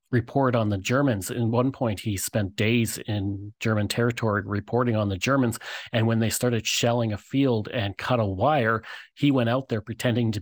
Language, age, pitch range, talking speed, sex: English, 40-59, 105-120 Hz, 195 wpm, male